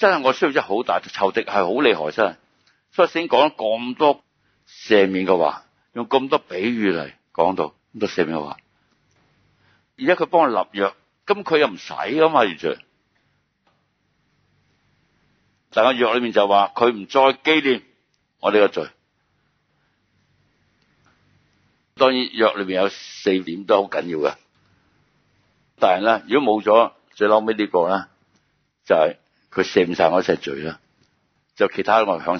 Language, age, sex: Chinese, 60-79, male